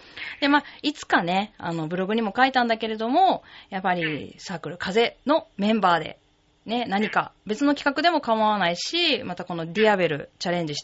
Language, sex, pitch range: Japanese, female, 170-250 Hz